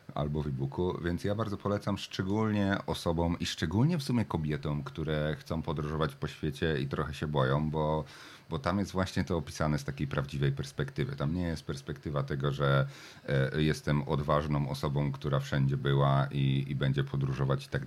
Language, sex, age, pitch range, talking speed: Polish, male, 40-59, 70-85 Hz, 175 wpm